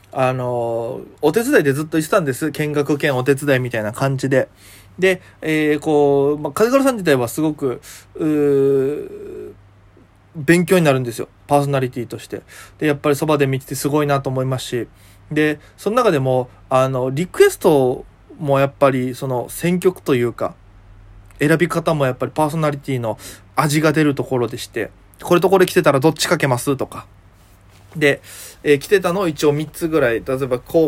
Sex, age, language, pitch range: male, 20-39, Japanese, 115-155 Hz